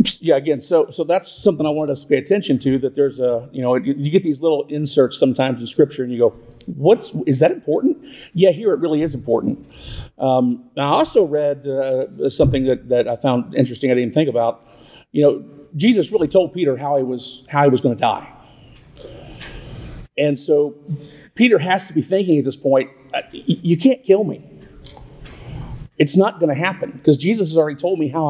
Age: 50-69